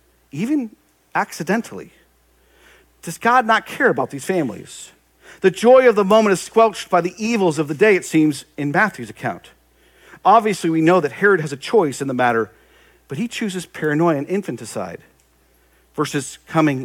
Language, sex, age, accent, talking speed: English, male, 50-69, American, 165 wpm